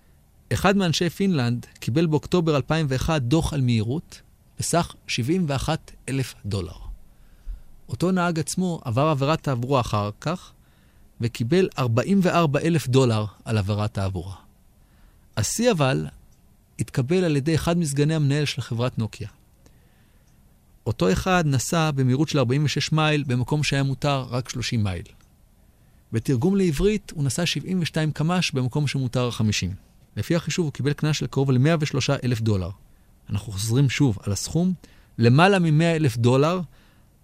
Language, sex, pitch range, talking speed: Hebrew, male, 110-160 Hz, 120 wpm